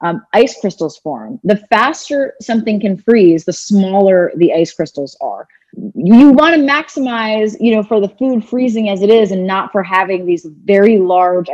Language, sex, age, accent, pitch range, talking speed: English, female, 30-49, American, 185-245 Hz, 180 wpm